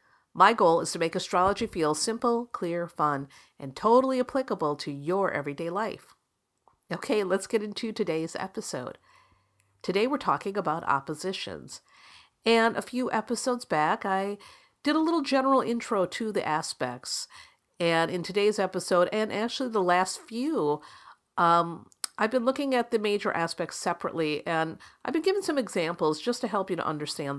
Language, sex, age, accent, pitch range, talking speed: English, female, 50-69, American, 170-245 Hz, 160 wpm